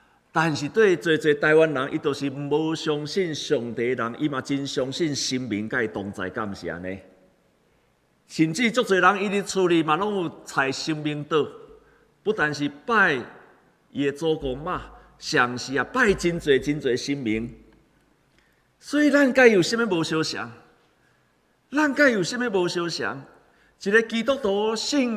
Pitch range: 115-175 Hz